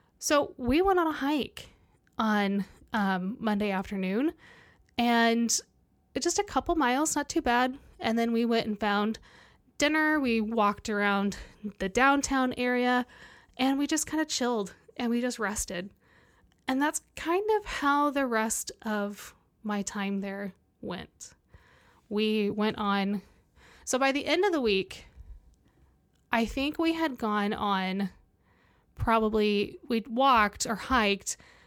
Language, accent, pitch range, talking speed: English, American, 215-280 Hz, 140 wpm